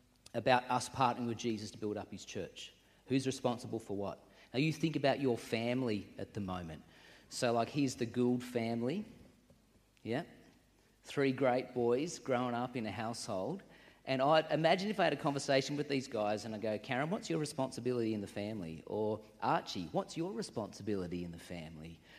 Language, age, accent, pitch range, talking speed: English, 40-59, Australian, 105-140 Hz, 180 wpm